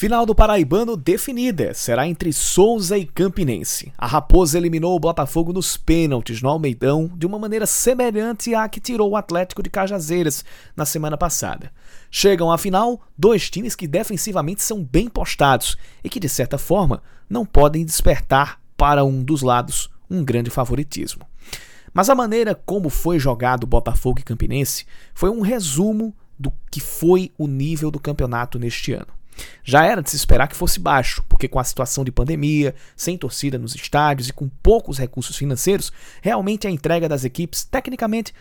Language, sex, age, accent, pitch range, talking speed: Portuguese, male, 20-39, Brazilian, 135-200 Hz, 170 wpm